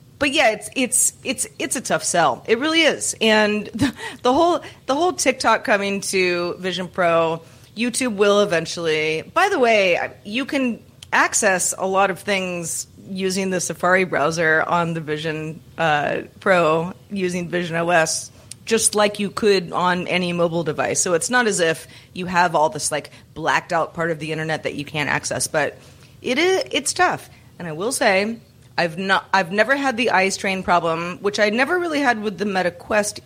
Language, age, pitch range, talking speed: English, 30-49, 160-210 Hz, 185 wpm